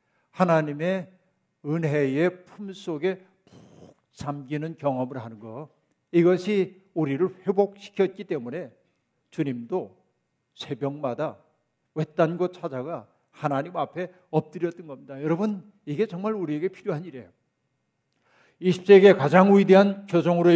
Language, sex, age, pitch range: Korean, male, 50-69, 145-185 Hz